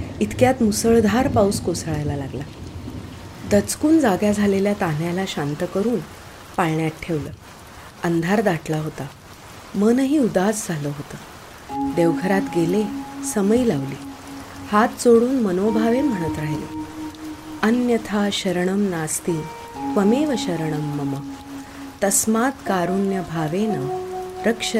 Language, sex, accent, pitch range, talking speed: Marathi, female, native, 155-225 Hz, 90 wpm